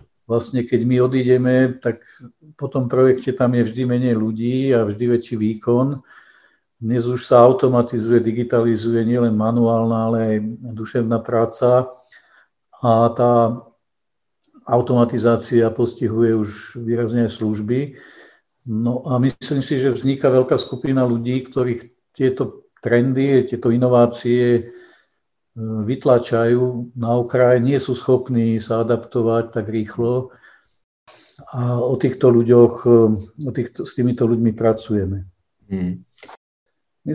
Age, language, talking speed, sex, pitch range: 50-69, Czech, 115 wpm, male, 115-130 Hz